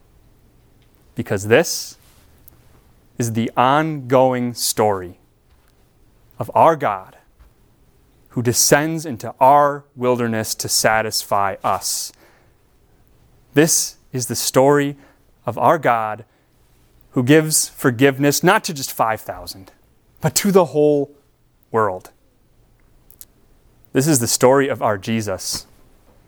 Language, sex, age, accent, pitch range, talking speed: English, male, 30-49, American, 110-140 Hz, 100 wpm